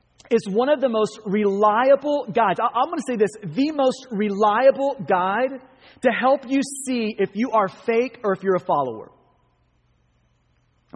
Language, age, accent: English, 30-49, American